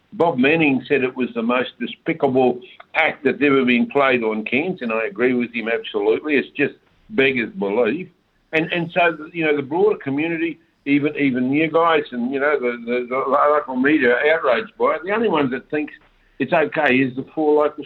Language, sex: English, male